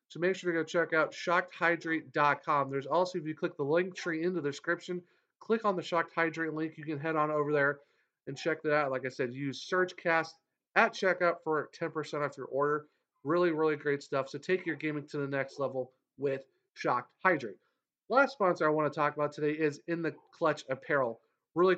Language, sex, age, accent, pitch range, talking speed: English, male, 40-59, American, 145-175 Hz, 210 wpm